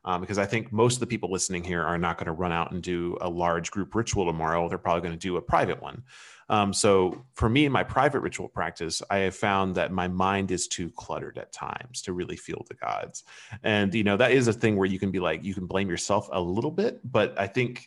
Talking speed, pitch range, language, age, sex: 260 wpm, 90-110 Hz, English, 30-49, male